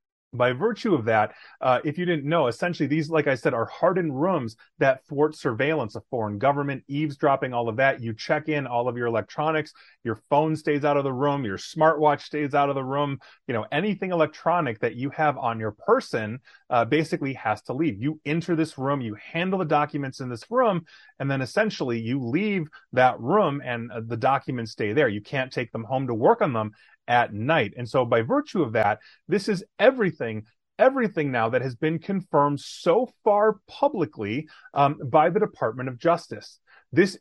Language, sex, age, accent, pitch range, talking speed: English, male, 30-49, American, 125-170 Hz, 195 wpm